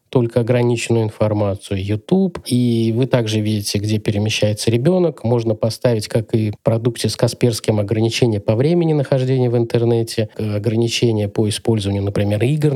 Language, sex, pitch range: Russian, male, 110-130 Hz